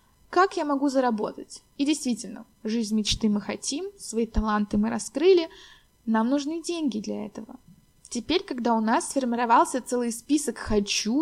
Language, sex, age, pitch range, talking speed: Russian, female, 20-39, 215-275 Hz, 145 wpm